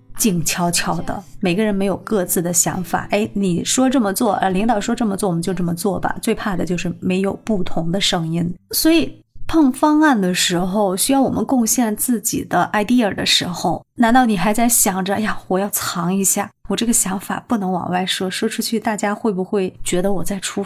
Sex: female